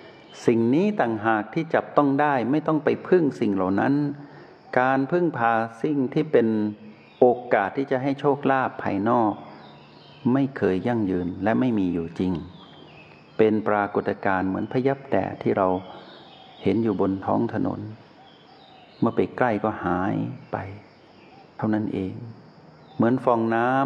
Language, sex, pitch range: Thai, male, 105-140 Hz